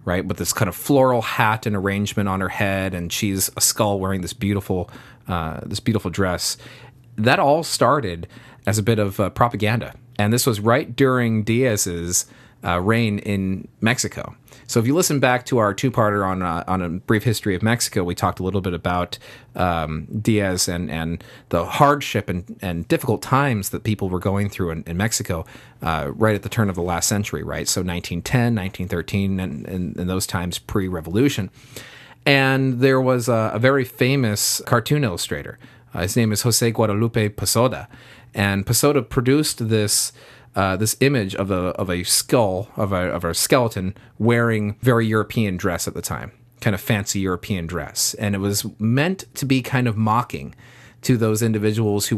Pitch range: 95-120 Hz